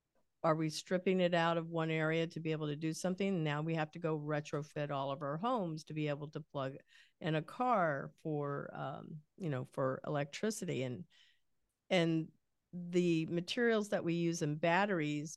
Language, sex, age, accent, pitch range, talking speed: English, female, 50-69, American, 155-185 Hz, 185 wpm